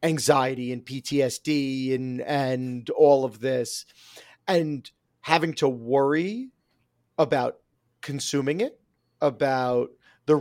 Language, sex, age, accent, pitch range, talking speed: English, male, 40-59, American, 130-160 Hz, 100 wpm